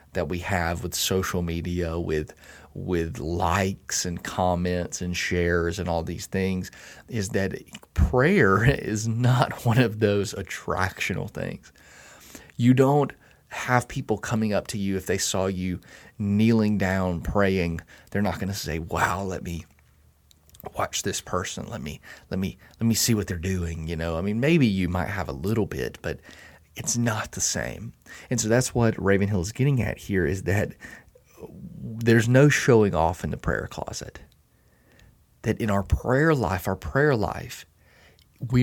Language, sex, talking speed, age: English, male, 165 wpm, 30-49